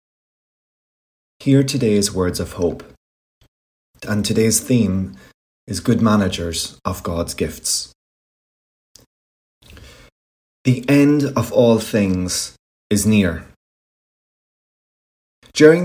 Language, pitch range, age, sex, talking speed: English, 85-115 Hz, 20-39, male, 85 wpm